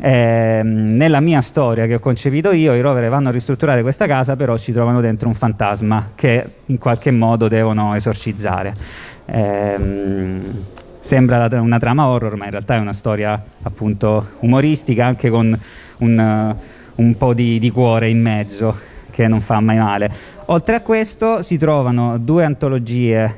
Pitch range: 115-140 Hz